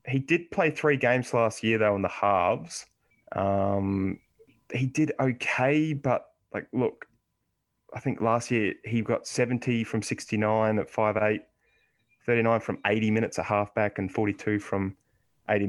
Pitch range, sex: 105-125 Hz, male